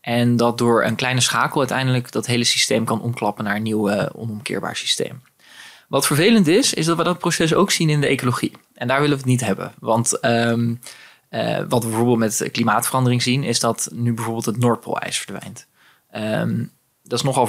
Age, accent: 20-39, Dutch